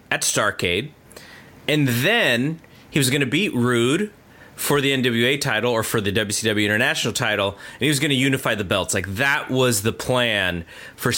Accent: American